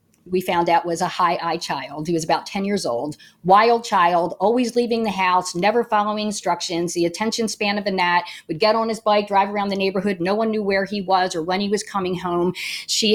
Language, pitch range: English, 175-215 Hz